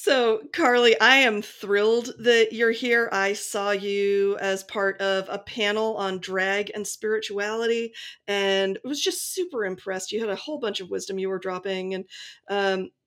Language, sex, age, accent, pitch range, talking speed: English, female, 40-59, American, 195-275 Hz, 175 wpm